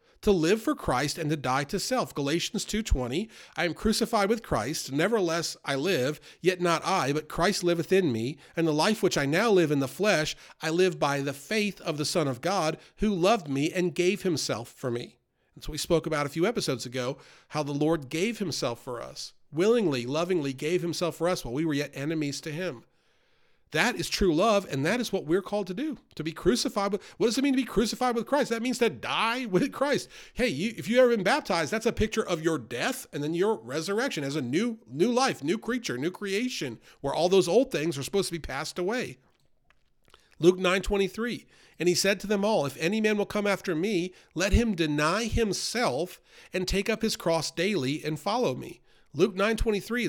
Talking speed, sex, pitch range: 215 wpm, male, 155-215 Hz